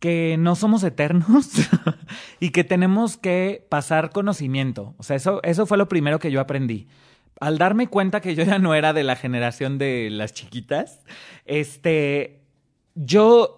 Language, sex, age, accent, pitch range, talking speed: Spanish, male, 30-49, Mexican, 140-175 Hz, 155 wpm